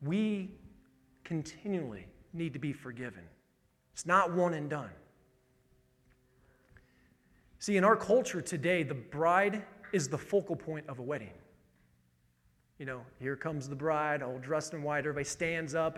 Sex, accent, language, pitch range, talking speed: male, American, English, 150-180 Hz, 145 wpm